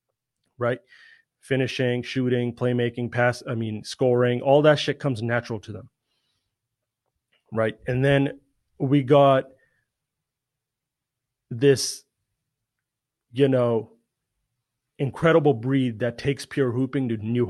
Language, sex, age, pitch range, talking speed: English, male, 30-49, 120-140 Hz, 105 wpm